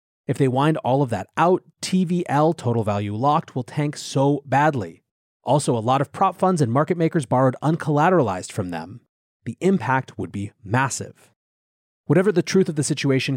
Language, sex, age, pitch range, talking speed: English, male, 30-49, 120-160 Hz, 175 wpm